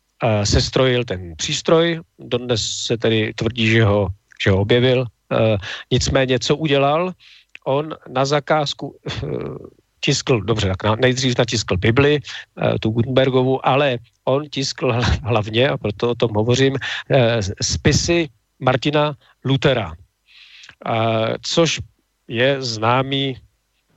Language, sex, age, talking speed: Czech, male, 40-59, 100 wpm